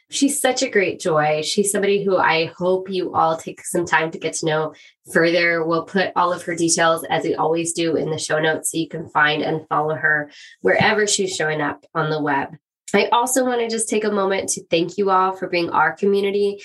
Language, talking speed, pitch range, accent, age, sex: English, 230 wpm, 165-195 Hz, American, 20-39, female